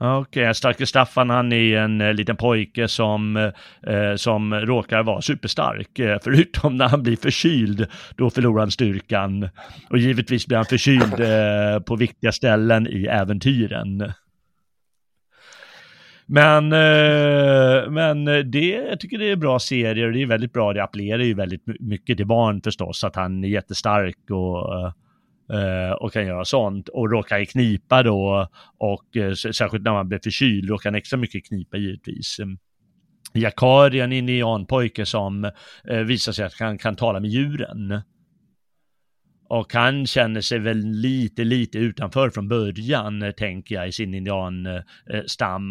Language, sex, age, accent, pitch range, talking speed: Swedish, male, 30-49, native, 105-125 Hz, 150 wpm